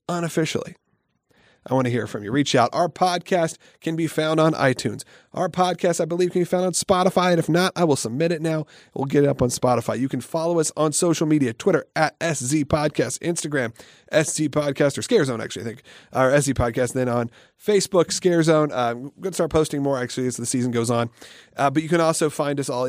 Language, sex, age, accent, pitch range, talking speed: English, male, 30-49, American, 120-160 Hz, 230 wpm